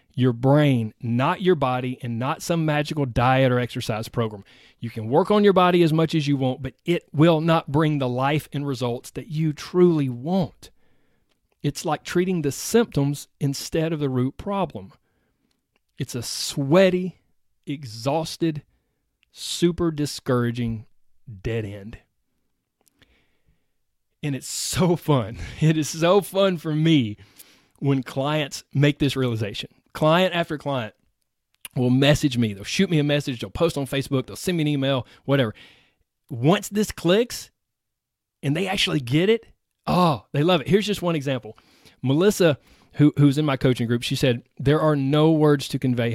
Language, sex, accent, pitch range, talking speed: English, male, American, 115-160 Hz, 160 wpm